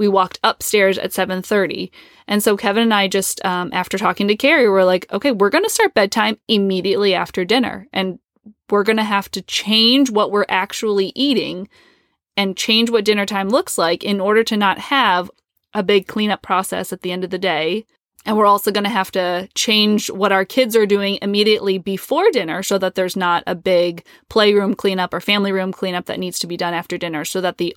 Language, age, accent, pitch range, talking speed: English, 20-39, American, 185-225 Hz, 210 wpm